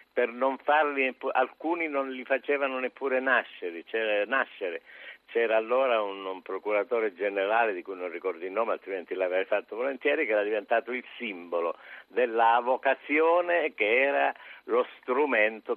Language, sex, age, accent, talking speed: Italian, male, 50-69, native, 145 wpm